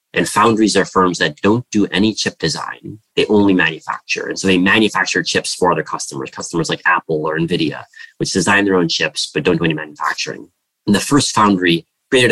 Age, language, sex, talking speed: 30-49, English, male, 200 wpm